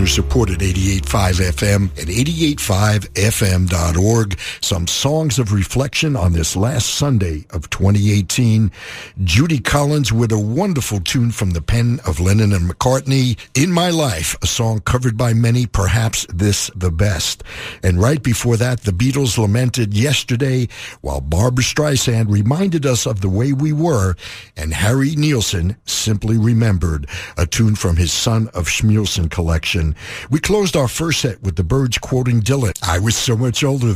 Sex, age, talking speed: male, 60-79, 155 wpm